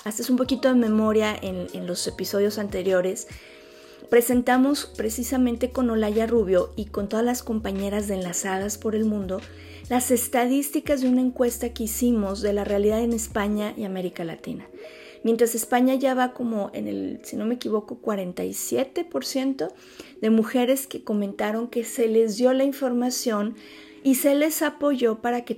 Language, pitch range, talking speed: Spanish, 200-250 Hz, 160 wpm